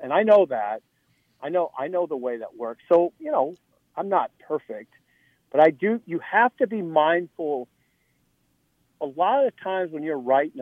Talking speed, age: 190 wpm, 50-69